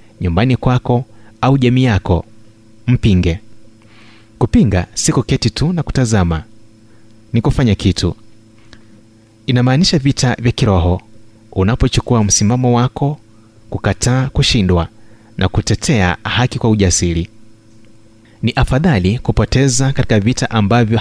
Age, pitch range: 30-49, 105-120 Hz